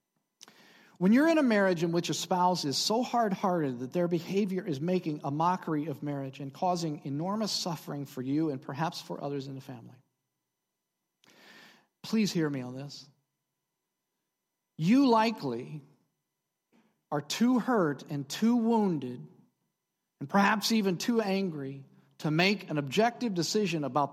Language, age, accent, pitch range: English, 40-59, American, 150-225 Hz